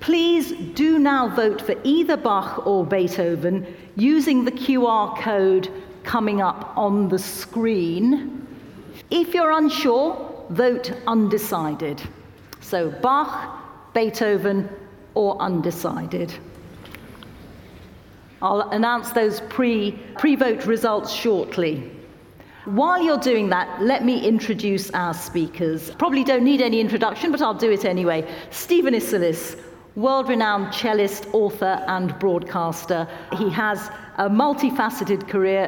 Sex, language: female, English